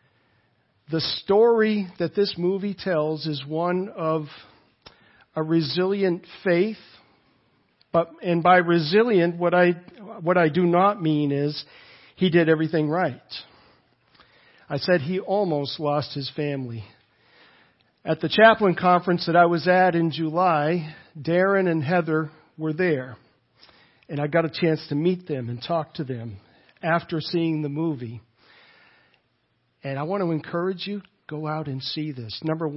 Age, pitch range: 50-69, 150-185 Hz